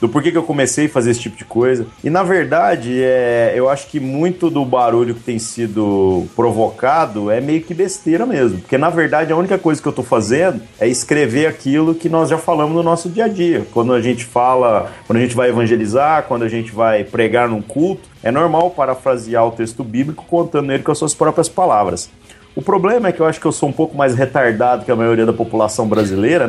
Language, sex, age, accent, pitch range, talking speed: Portuguese, male, 40-59, Brazilian, 125-170 Hz, 225 wpm